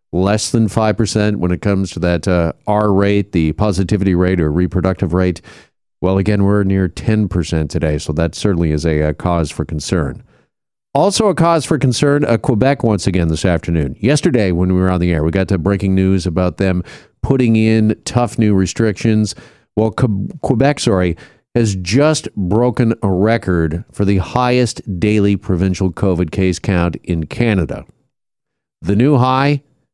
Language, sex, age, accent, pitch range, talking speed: English, male, 40-59, American, 90-125 Hz, 170 wpm